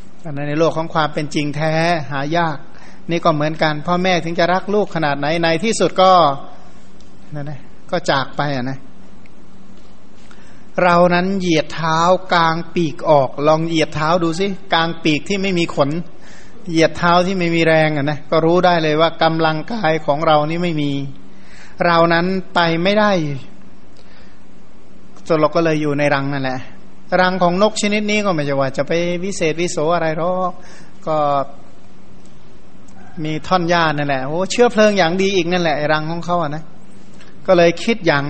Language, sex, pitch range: Thai, male, 150-180 Hz